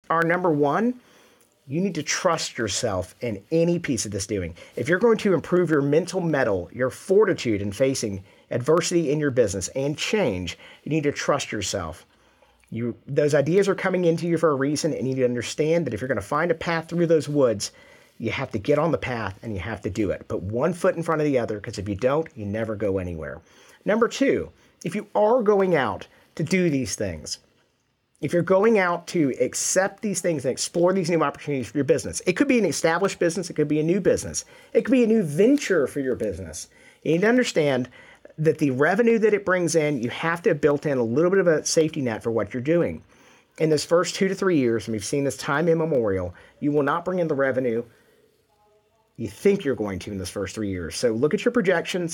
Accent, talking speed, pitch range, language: American, 235 wpm, 125-180 Hz, English